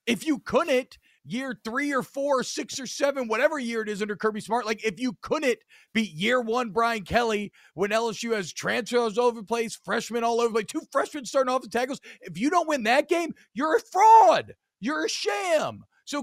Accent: American